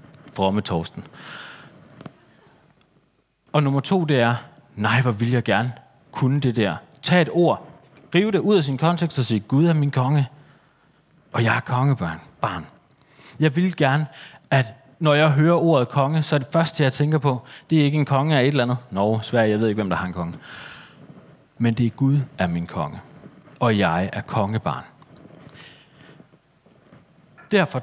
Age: 30-49